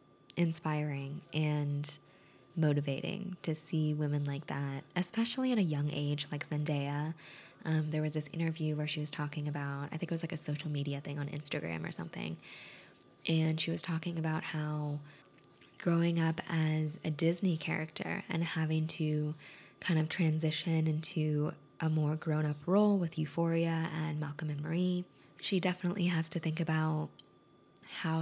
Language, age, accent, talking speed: English, 20-39, American, 155 wpm